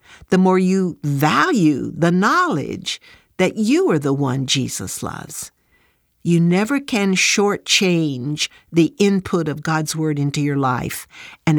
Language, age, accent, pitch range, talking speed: English, 60-79, American, 155-205 Hz, 135 wpm